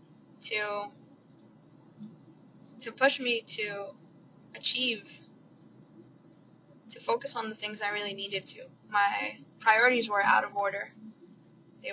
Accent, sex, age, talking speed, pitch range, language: American, female, 20-39, 110 wpm, 190-225 Hz, English